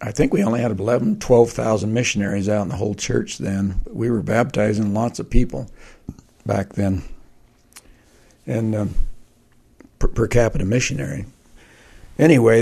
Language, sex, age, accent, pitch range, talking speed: English, male, 60-79, American, 100-115 Hz, 140 wpm